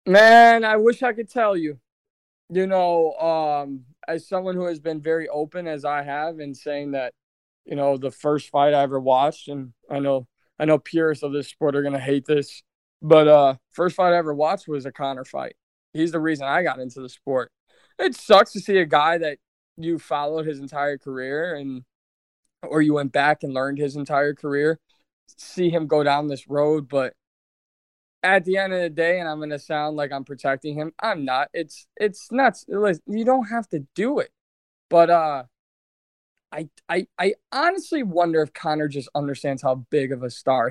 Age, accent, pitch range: 20-39, American, 140-170 Hz